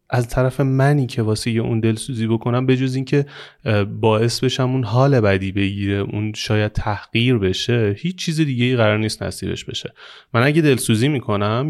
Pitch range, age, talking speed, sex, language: 110-150 Hz, 30-49, 170 wpm, male, Persian